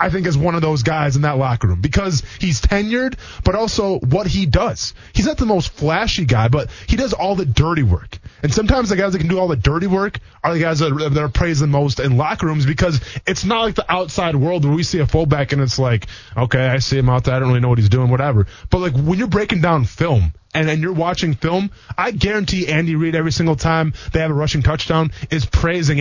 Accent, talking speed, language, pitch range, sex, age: American, 250 wpm, English, 125-175 Hz, male, 20-39